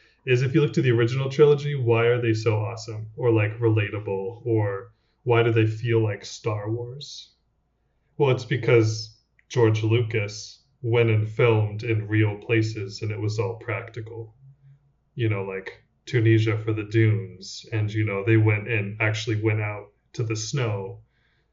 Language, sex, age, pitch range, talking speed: English, male, 20-39, 110-125 Hz, 160 wpm